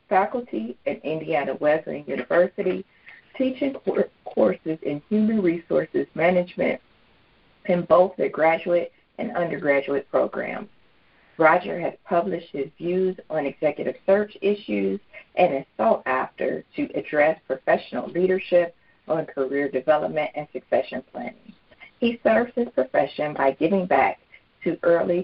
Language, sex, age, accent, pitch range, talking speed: English, female, 50-69, American, 140-190 Hz, 120 wpm